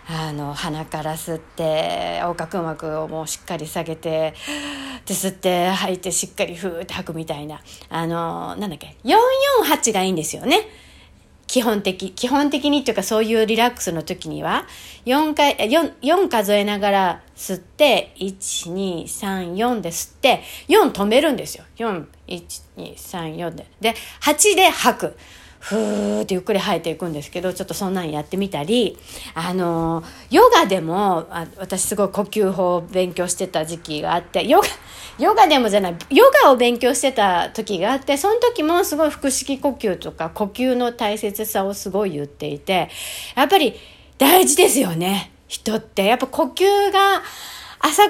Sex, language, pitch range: female, Japanese, 170-270 Hz